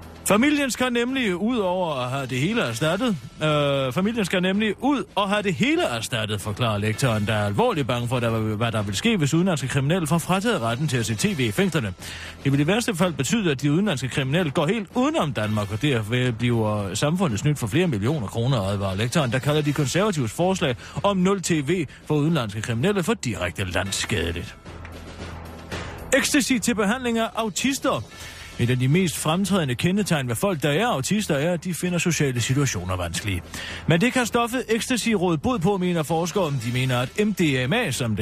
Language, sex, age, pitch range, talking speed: Danish, male, 30-49, 115-185 Hz, 180 wpm